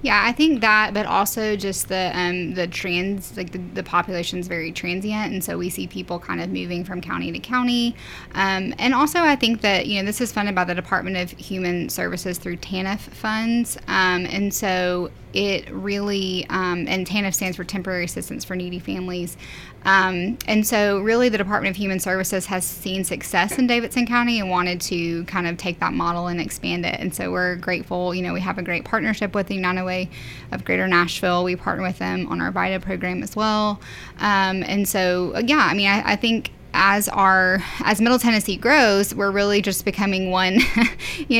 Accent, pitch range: American, 180-210 Hz